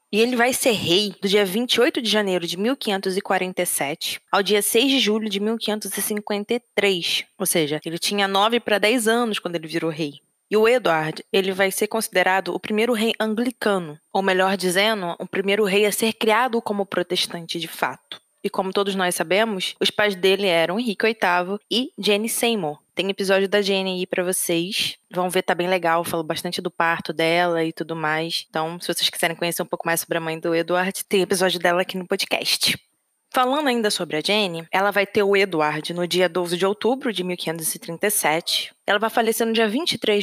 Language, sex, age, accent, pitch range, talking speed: Portuguese, female, 20-39, Brazilian, 175-215 Hz, 195 wpm